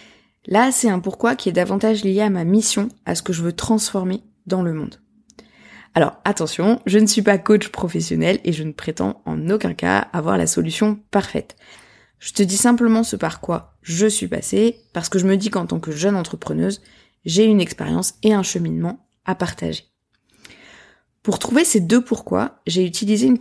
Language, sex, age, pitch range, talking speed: French, female, 20-39, 175-220 Hz, 190 wpm